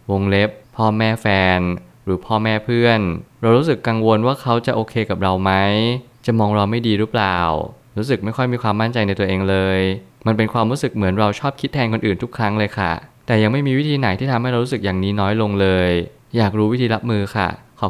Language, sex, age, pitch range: Thai, male, 20-39, 95-115 Hz